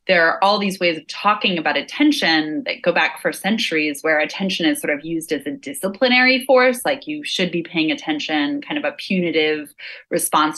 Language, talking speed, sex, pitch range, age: English, 200 wpm, female, 160-235 Hz, 20-39